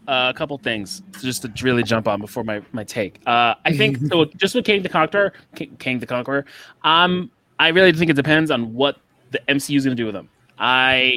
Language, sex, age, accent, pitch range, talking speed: English, male, 20-39, American, 125-155 Hz, 225 wpm